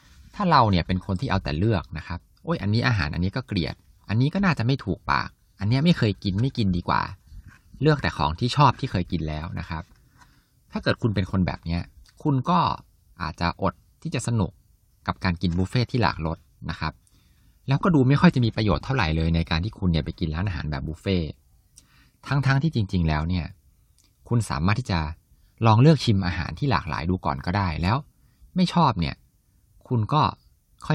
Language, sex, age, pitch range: Thai, male, 20-39, 85-120 Hz